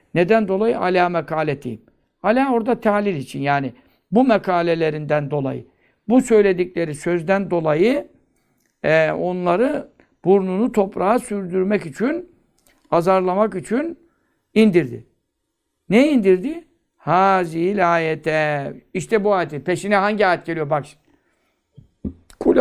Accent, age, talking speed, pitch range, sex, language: native, 60-79, 105 wpm, 160-210 Hz, male, Turkish